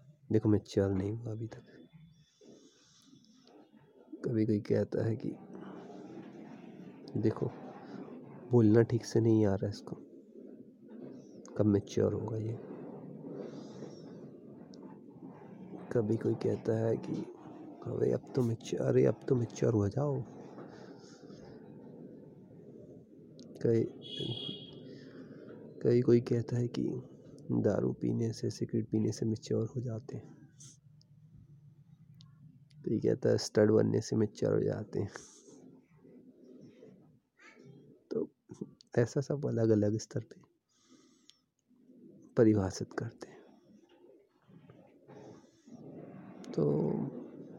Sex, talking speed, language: male, 65 wpm, Hindi